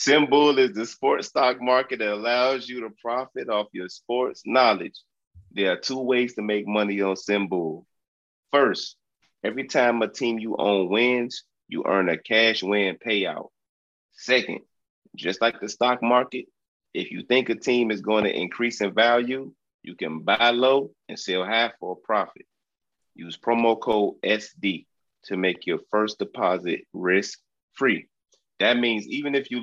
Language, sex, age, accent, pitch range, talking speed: English, male, 30-49, American, 105-125 Hz, 165 wpm